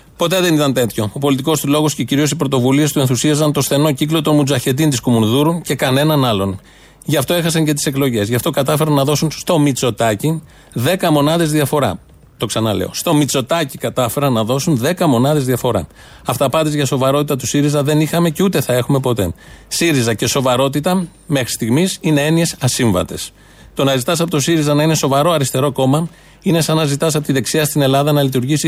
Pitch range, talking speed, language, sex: 130-160 Hz, 195 wpm, Greek, male